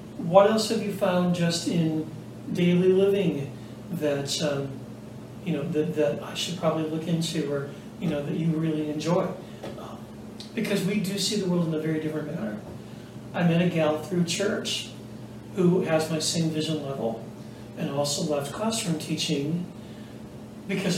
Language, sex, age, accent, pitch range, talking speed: English, male, 40-59, American, 150-190 Hz, 160 wpm